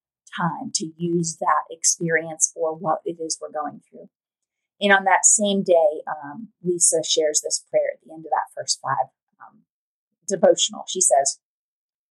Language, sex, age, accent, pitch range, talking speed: English, female, 30-49, American, 165-200 Hz, 165 wpm